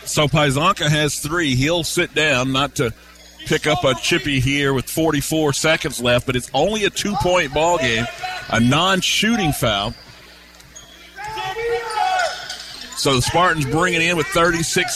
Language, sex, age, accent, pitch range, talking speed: English, male, 50-69, American, 150-190 Hz, 145 wpm